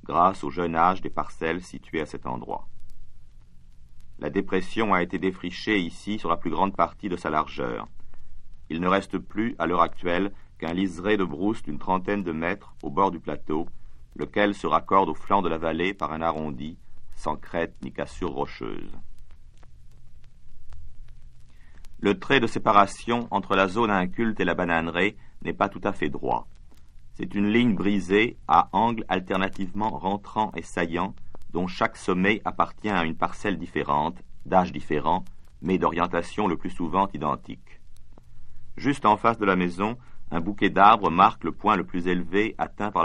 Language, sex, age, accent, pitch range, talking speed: English, male, 50-69, French, 70-100 Hz, 165 wpm